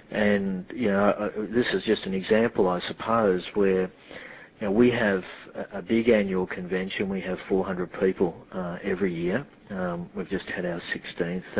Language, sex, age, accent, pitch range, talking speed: English, male, 50-69, Australian, 90-110 Hz, 170 wpm